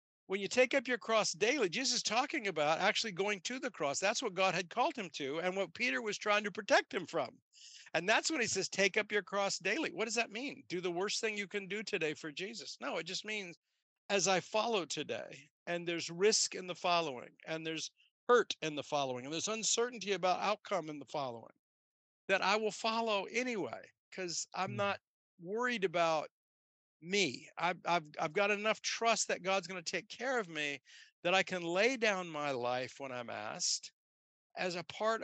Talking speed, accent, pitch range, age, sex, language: 210 wpm, American, 165-220 Hz, 50-69, male, English